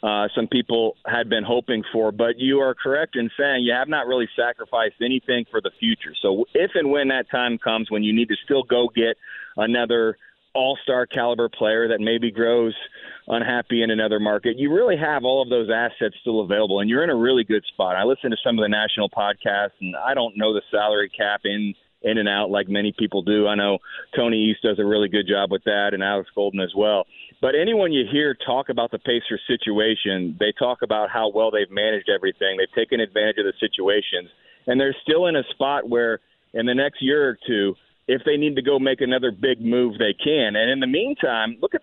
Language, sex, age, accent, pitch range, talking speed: English, male, 40-59, American, 110-150 Hz, 220 wpm